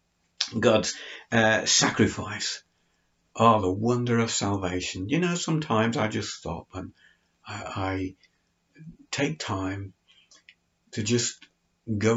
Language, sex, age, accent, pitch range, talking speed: English, male, 60-79, British, 95-110 Hz, 115 wpm